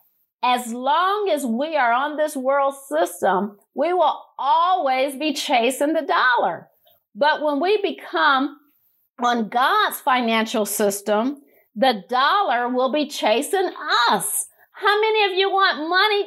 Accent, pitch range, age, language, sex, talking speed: American, 235-315 Hz, 50-69, English, female, 135 wpm